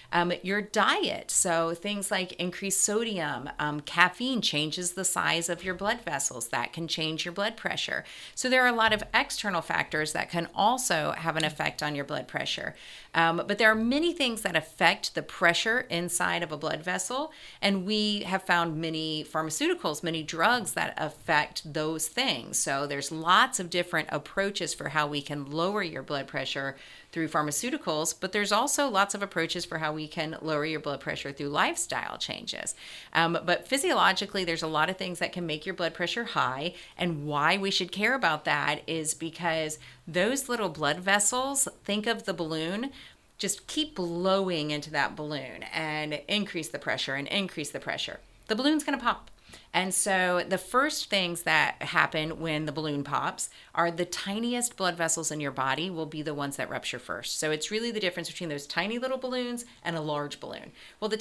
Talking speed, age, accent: 190 wpm, 40-59, American